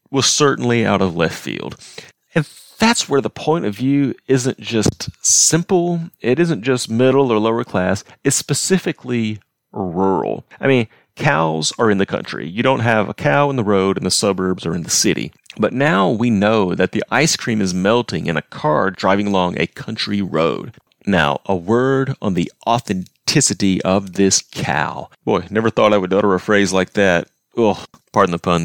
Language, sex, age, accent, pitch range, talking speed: English, male, 30-49, American, 95-130 Hz, 185 wpm